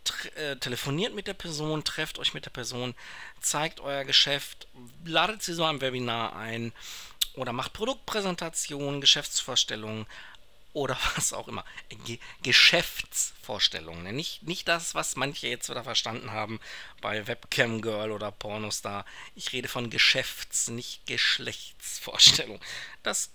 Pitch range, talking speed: 110-145 Hz, 130 wpm